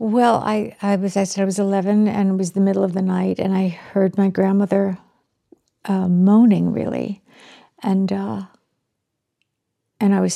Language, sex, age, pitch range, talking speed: English, female, 60-79, 180-200 Hz, 170 wpm